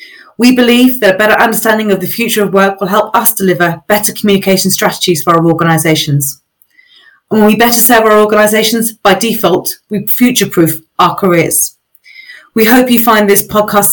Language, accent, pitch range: English, British, 200-270 Hz